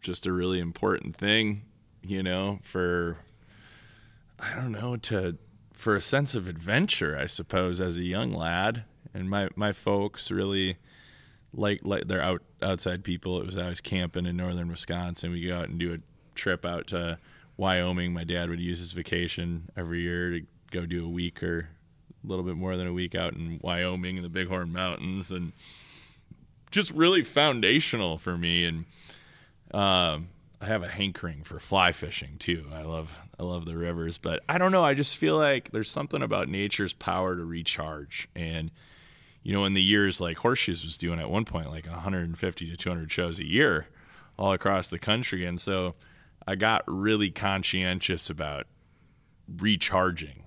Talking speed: 175 wpm